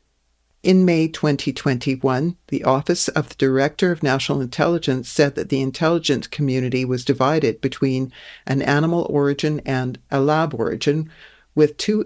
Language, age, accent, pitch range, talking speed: English, 50-69, American, 130-155 Hz, 140 wpm